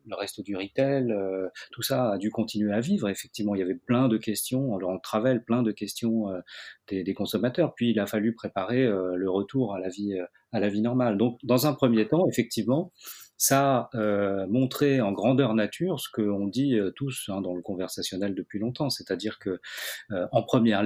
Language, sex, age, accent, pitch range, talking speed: French, male, 30-49, French, 105-135 Hz, 210 wpm